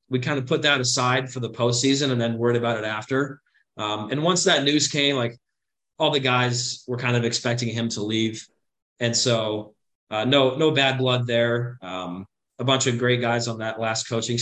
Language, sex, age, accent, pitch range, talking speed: English, male, 30-49, American, 115-135 Hz, 210 wpm